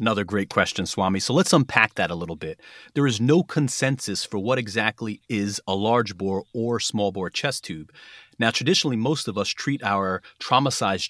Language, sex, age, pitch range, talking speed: English, male, 30-49, 100-130 Hz, 190 wpm